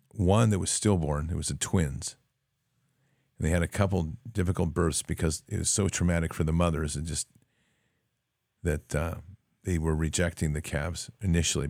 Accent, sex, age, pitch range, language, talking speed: American, male, 50-69, 80-105 Hz, English, 170 wpm